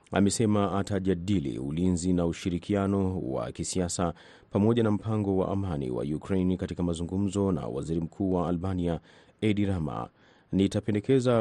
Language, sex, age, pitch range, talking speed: Swahili, male, 30-49, 85-100 Hz, 130 wpm